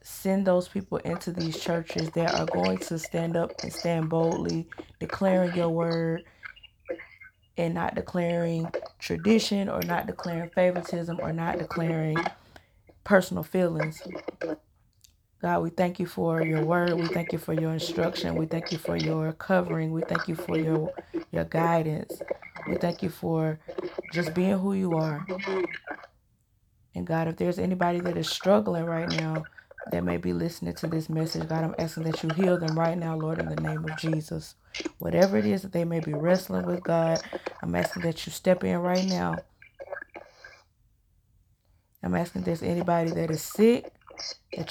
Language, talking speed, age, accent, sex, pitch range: English, 165 wpm, 20-39, American, female, 155-180 Hz